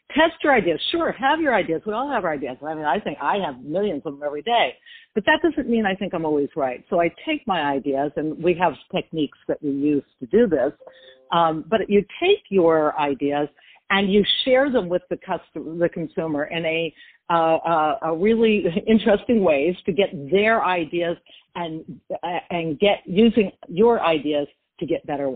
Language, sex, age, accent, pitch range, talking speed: English, female, 60-79, American, 160-230 Hz, 200 wpm